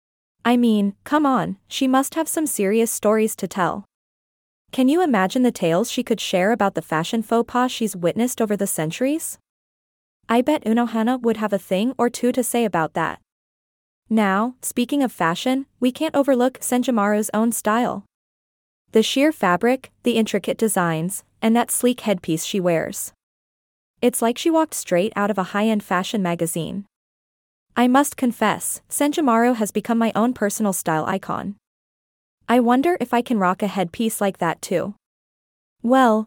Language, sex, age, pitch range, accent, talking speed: English, female, 20-39, 195-245 Hz, American, 165 wpm